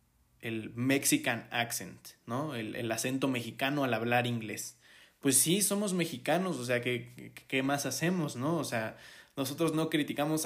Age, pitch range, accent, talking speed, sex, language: 20-39, 115-145 Hz, Mexican, 155 wpm, male, Spanish